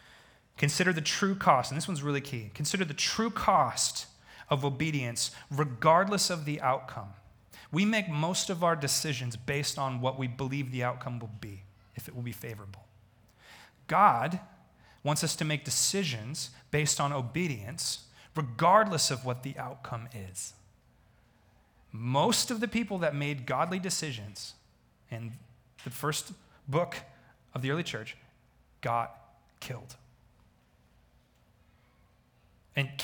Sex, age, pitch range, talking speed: male, 30-49, 120-150 Hz, 135 wpm